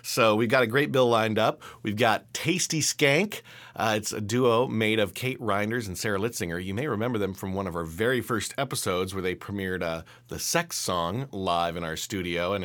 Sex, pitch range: male, 95-125 Hz